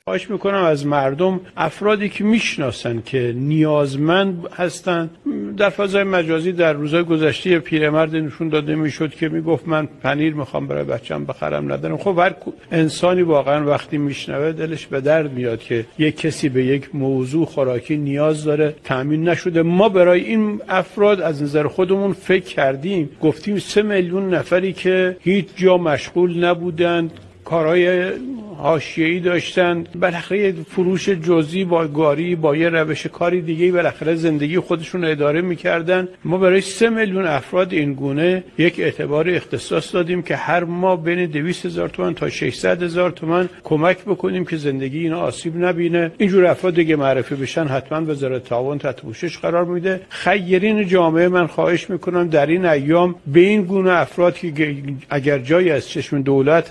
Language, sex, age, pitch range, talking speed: Persian, male, 50-69, 150-180 Hz, 150 wpm